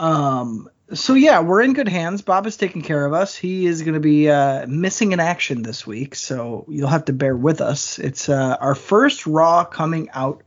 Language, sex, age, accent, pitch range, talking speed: English, male, 20-39, American, 135-180 Hz, 220 wpm